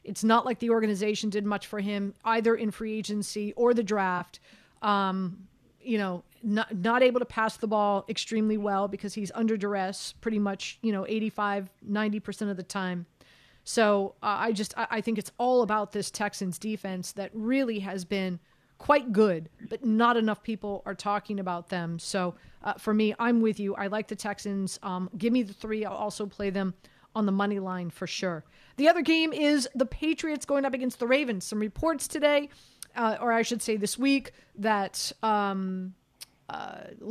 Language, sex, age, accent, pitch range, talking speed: English, female, 30-49, American, 200-245 Hz, 190 wpm